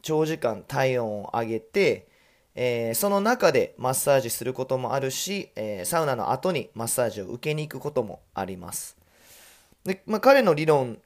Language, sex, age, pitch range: Japanese, male, 20-39, 115-180 Hz